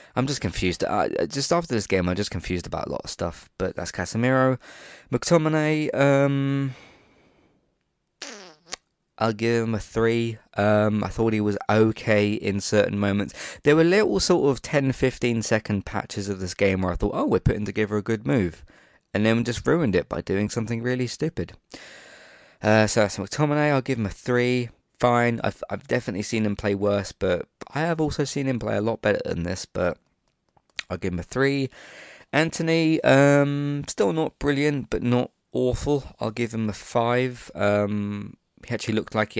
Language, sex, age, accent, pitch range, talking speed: English, male, 20-39, British, 100-125 Hz, 185 wpm